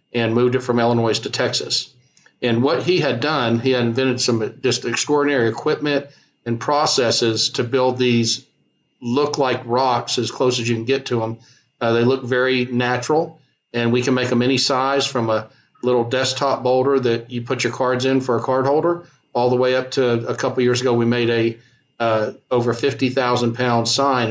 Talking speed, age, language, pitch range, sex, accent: 195 wpm, 50-69, English, 120-135 Hz, male, American